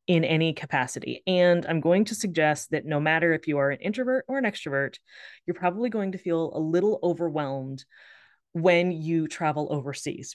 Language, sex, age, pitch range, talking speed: English, female, 20-39, 150-180 Hz, 180 wpm